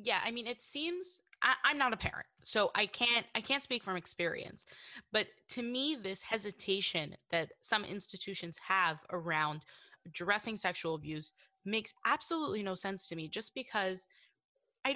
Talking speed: 160 wpm